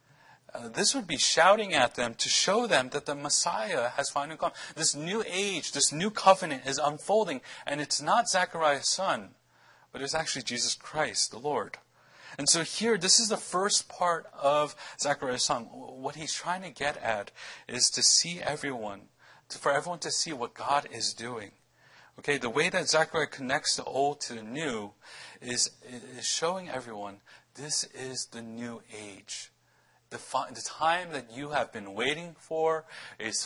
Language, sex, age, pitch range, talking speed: English, male, 40-59, 115-160 Hz, 170 wpm